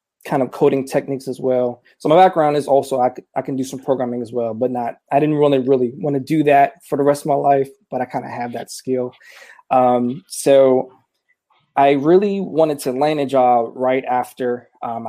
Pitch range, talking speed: 125-140 Hz, 215 wpm